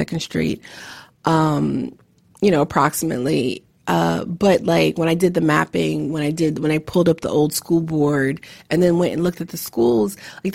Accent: American